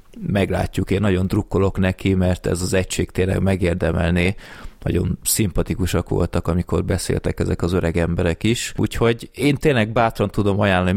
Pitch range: 90-105 Hz